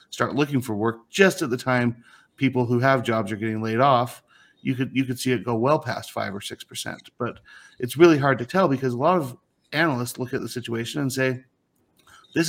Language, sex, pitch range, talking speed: English, male, 115-135 Hz, 225 wpm